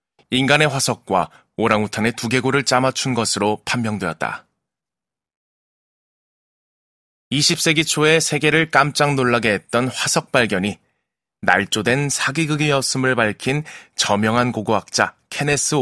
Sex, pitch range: male, 105-135 Hz